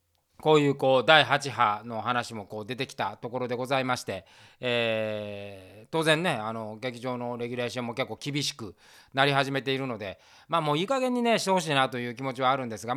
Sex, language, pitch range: male, Japanese, 110-155 Hz